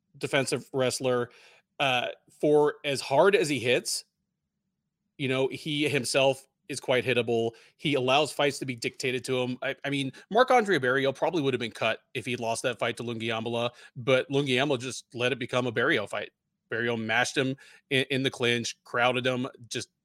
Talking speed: 185 wpm